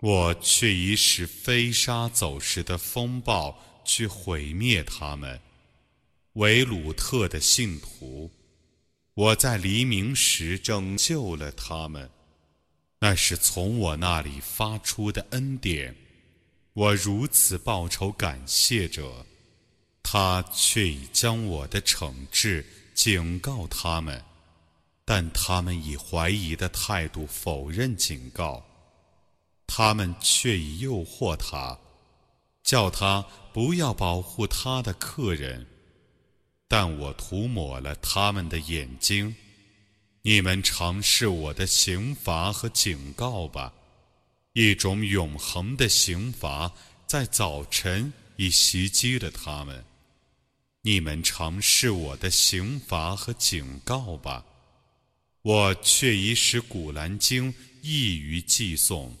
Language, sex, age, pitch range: Arabic, male, 30-49, 80-110 Hz